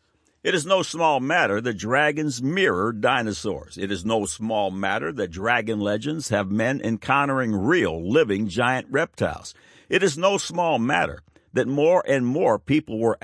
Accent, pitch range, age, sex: American, 100-135 Hz, 60-79, male